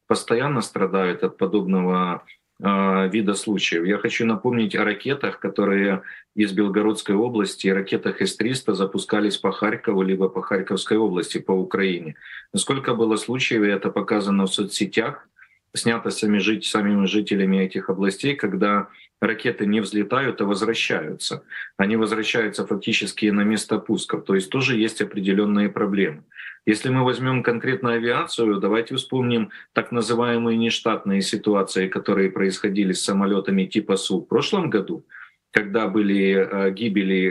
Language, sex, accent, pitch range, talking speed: Russian, male, native, 100-120 Hz, 130 wpm